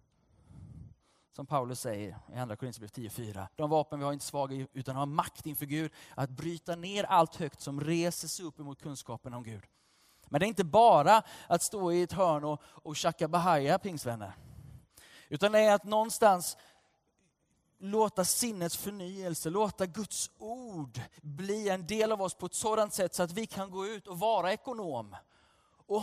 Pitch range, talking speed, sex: 130-190 Hz, 175 wpm, male